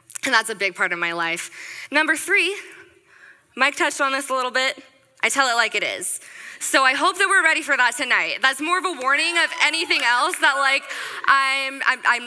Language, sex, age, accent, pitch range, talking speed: English, female, 10-29, American, 190-275 Hz, 220 wpm